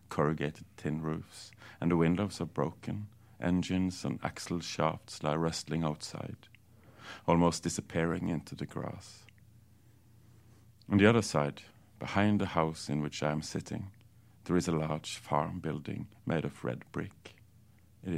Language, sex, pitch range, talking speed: English, male, 85-110 Hz, 140 wpm